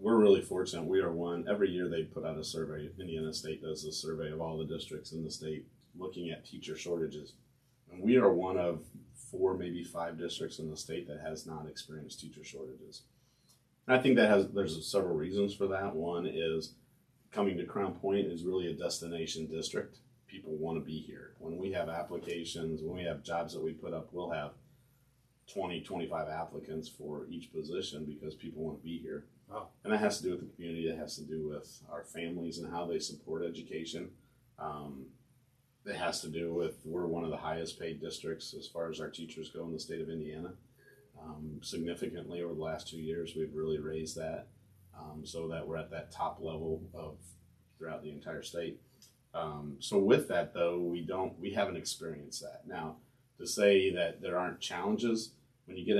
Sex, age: male, 30-49